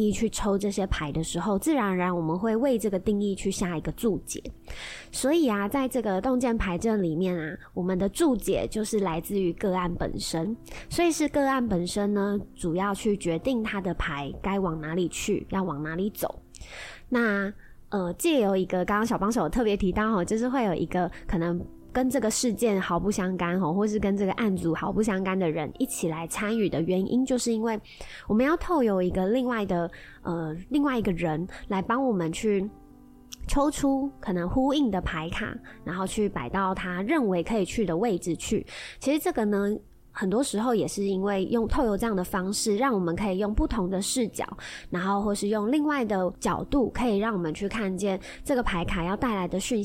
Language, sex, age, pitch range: Chinese, female, 20-39, 180-230 Hz